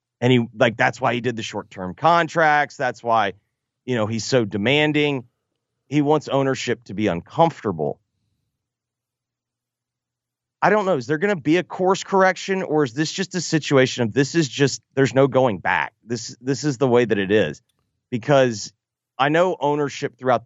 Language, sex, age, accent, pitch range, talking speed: English, male, 30-49, American, 115-140 Hz, 180 wpm